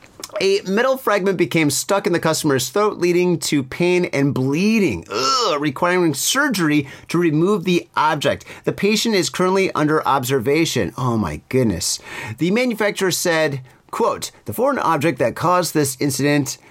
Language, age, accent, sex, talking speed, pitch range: English, 30-49, American, male, 145 wpm, 130-180 Hz